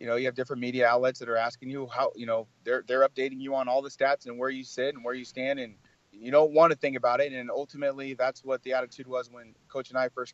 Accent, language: American, English